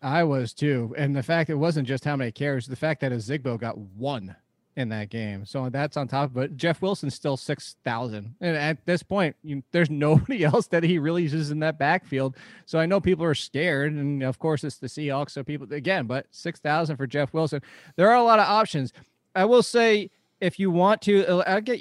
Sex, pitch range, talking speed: male, 135-170 Hz, 225 wpm